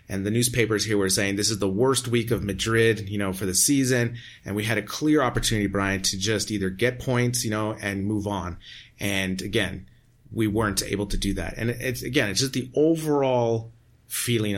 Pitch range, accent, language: 100-120 Hz, American, English